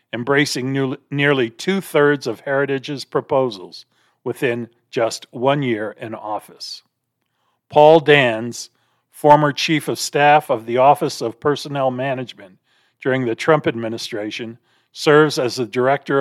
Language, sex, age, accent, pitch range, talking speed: English, male, 50-69, American, 120-150 Hz, 120 wpm